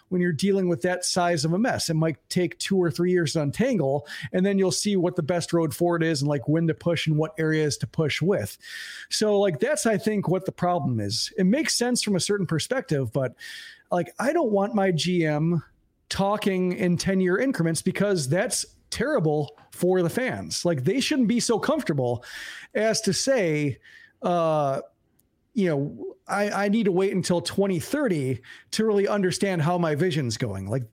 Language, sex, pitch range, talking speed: English, male, 160-205 Hz, 195 wpm